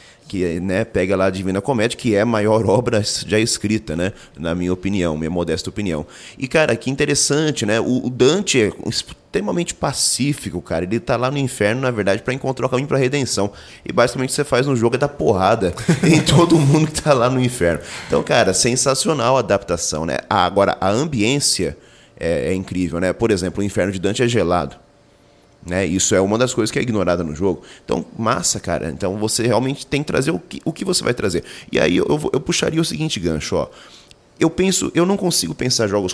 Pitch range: 95-130 Hz